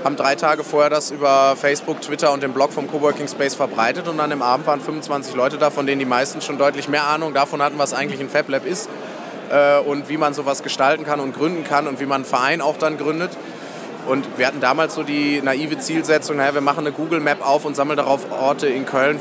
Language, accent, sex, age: German, German, male, 30-49